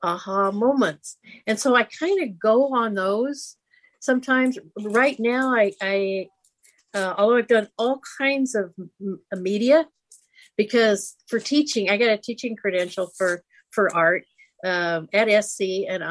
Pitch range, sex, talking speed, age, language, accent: 185-245 Hz, female, 145 wpm, 50-69, English, American